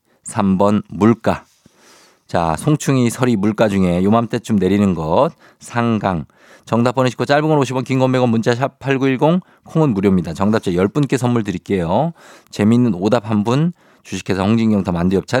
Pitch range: 90-120 Hz